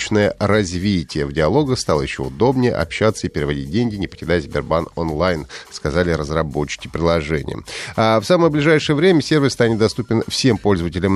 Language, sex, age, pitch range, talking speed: Russian, male, 30-49, 90-130 Hz, 145 wpm